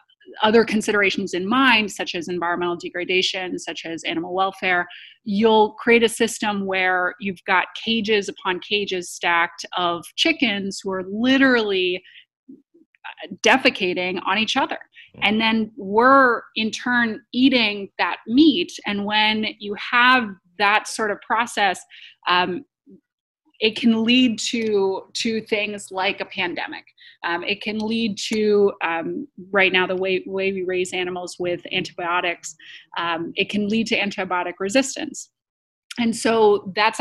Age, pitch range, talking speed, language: 20-39, 180-225 Hz, 135 wpm, English